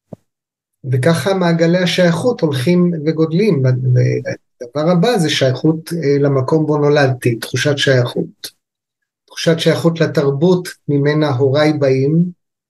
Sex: male